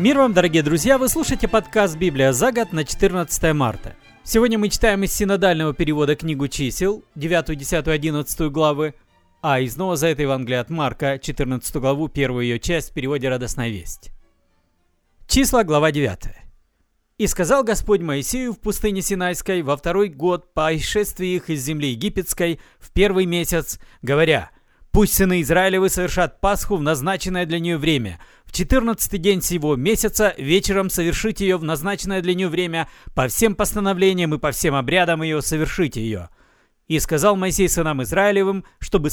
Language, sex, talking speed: Russian, male, 160 wpm